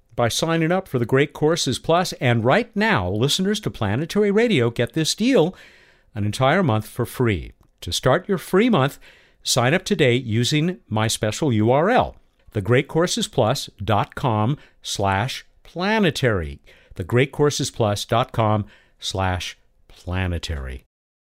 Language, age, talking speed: English, 50-69, 110 wpm